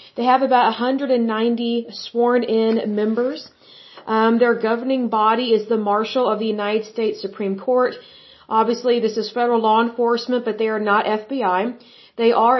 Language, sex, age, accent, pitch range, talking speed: Spanish, female, 40-59, American, 220-245 Hz, 150 wpm